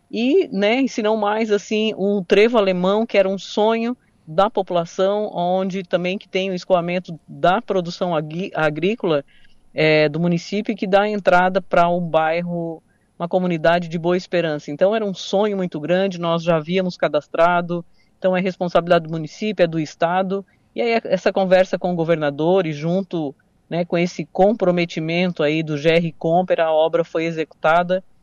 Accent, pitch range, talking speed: Brazilian, 170-200 Hz, 155 wpm